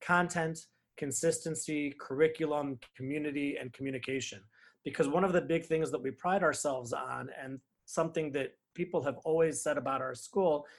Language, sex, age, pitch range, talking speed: English, male, 30-49, 140-165 Hz, 150 wpm